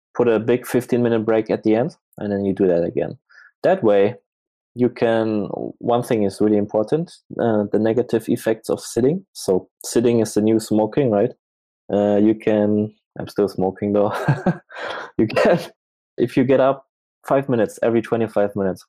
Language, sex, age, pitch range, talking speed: English, male, 20-39, 100-115 Hz, 170 wpm